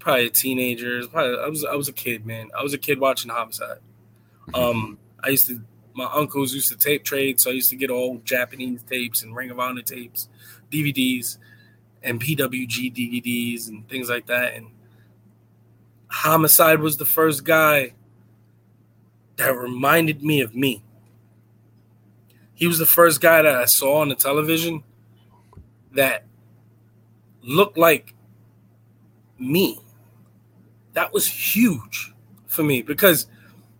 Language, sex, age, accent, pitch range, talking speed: English, male, 20-39, American, 115-145 Hz, 140 wpm